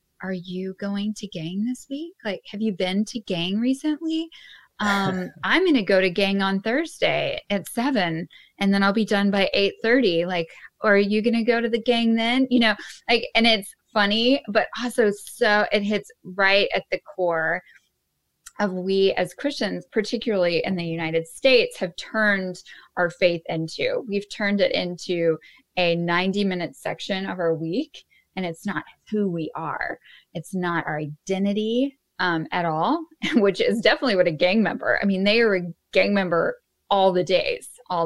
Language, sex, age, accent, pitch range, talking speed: English, female, 20-39, American, 175-225 Hz, 180 wpm